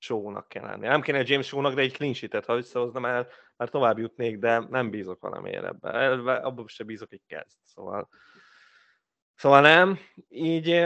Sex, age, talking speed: male, 20-39, 170 wpm